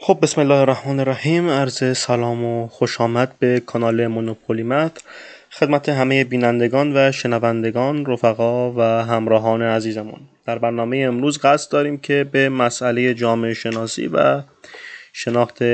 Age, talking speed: 20-39, 125 wpm